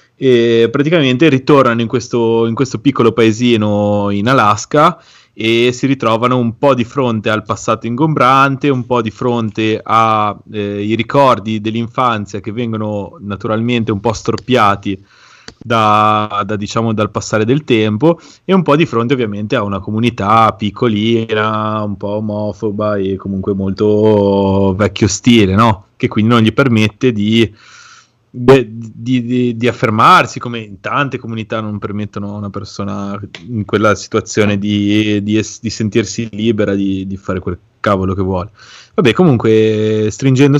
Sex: male